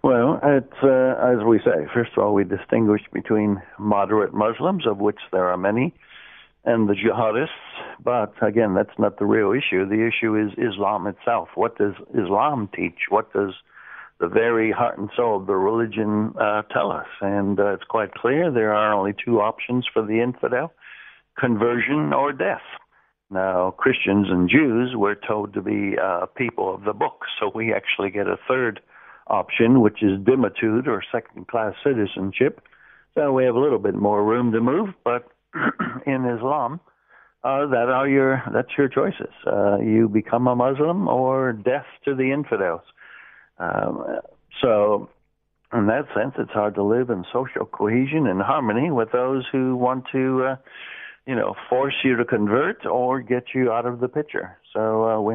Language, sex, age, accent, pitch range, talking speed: English, male, 60-79, American, 105-130 Hz, 170 wpm